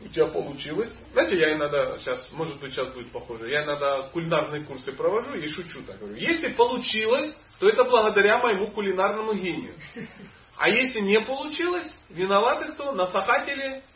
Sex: male